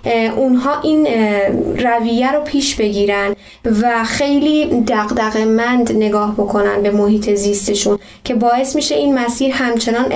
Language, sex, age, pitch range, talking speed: Persian, female, 10-29, 215-255 Hz, 130 wpm